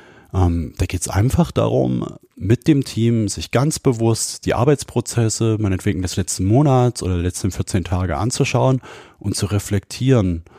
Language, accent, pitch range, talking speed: German, German, 95-120 Hz, 140 wpm